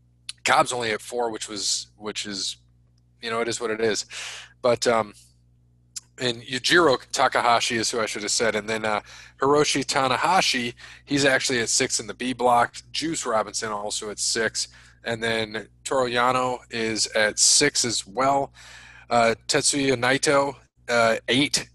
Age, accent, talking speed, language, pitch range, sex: 20-39, American, 160 wpm, English, 105-125 Hz, male